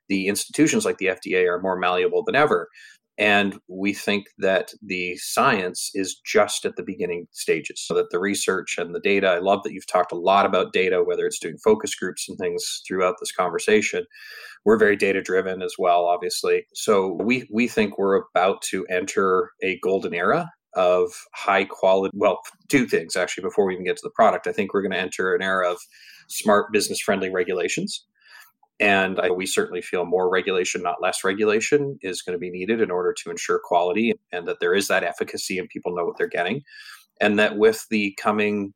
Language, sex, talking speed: English, male, 195 wpm